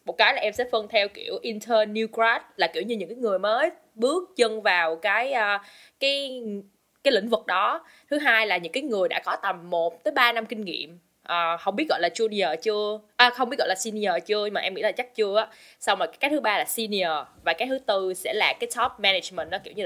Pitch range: 200-280 Hz